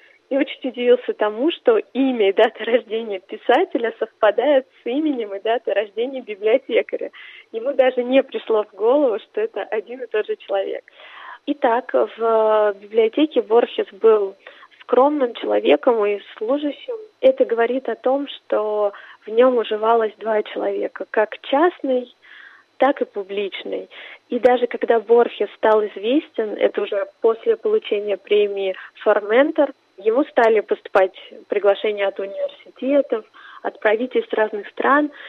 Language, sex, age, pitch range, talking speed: Russian, female, 20-39, 210-290 Hz, 130 wpm